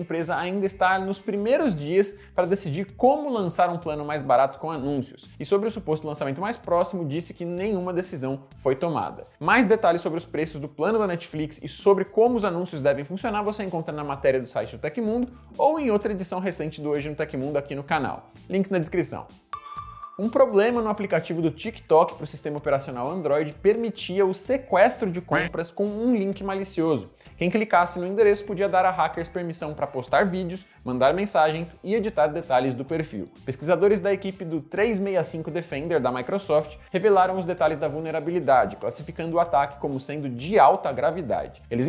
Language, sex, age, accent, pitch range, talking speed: Portuguese, male, 20-39, Brazilian, 150-200 Hz, 185 wpm